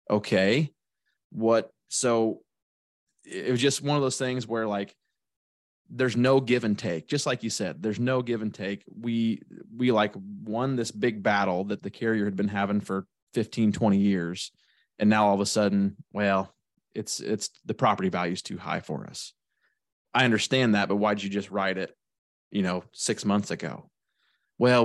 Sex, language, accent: male, English, American